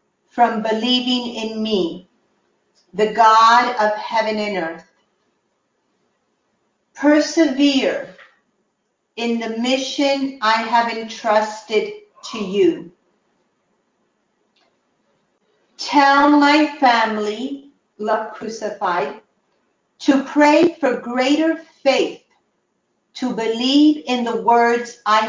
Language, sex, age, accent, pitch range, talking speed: English, female, 50-69, American, 220-285 Hz, 85 wpm